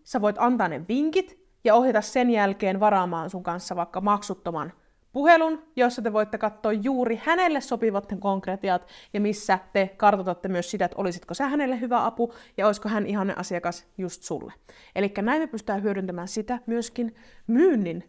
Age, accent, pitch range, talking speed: 30-49, native, 190-240 Hz, 165 wpm